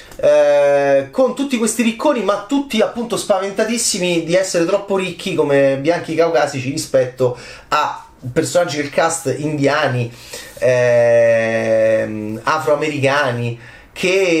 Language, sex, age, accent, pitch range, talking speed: Italian, male, 30-49, native, 125-200 Hz, 105 wpm